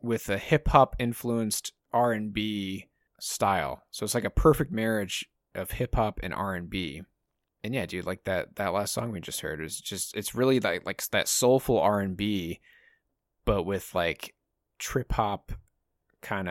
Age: 20-39